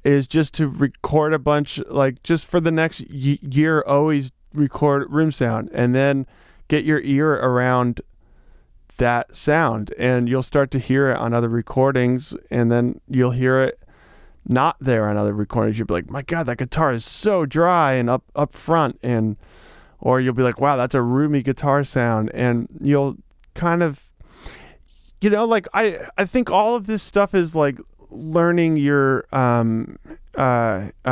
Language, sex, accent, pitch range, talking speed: English, male, American, 120-150 Hz, 170 wpm